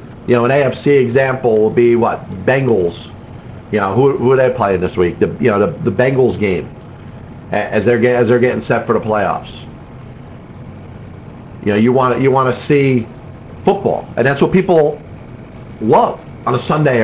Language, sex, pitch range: English, male, 120-145 Hz